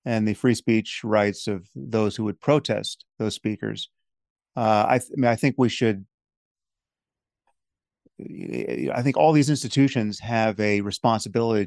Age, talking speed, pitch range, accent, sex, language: 30-49, 150 wpm, 105-120 Hz, American, male, English